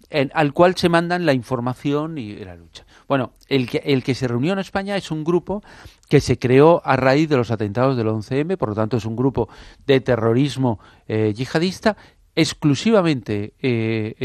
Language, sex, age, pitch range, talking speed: English, male, 40-59, 105-145 Hz, 185 wpm